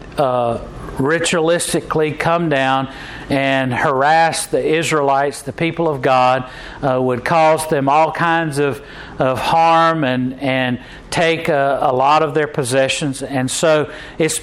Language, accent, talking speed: English, American, 135 wpm